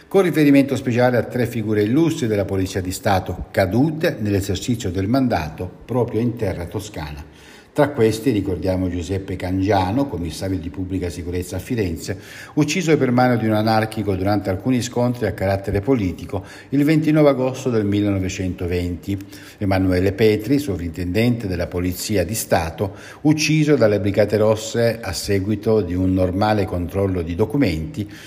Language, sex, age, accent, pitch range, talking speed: Italian, male, 60-79, native, 95-125 Hz, 140 wpm